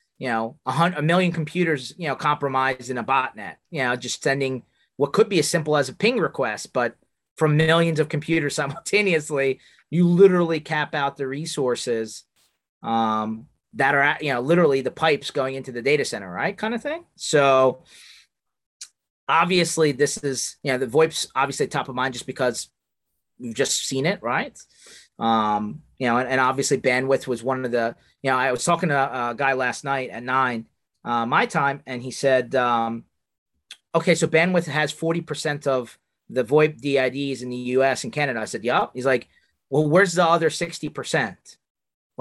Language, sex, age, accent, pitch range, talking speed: English, male, 30-49, American, 130-165 Hz, 185 wpm